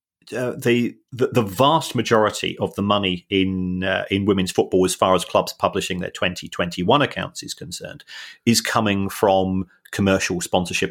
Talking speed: 165 wpm